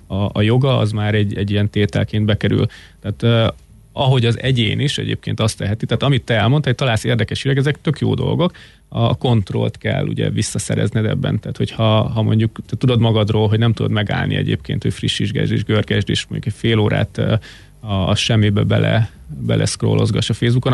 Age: 30-49